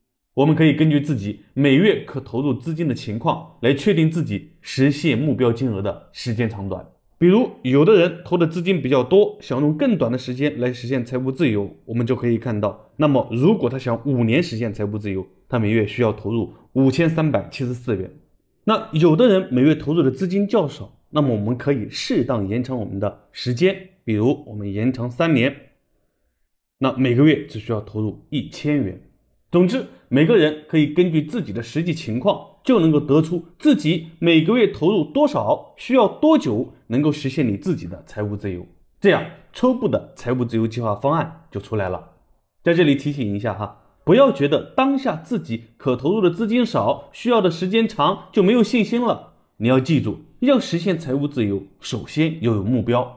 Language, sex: Chinese, male